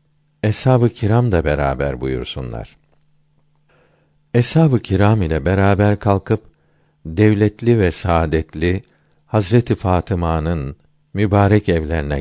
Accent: native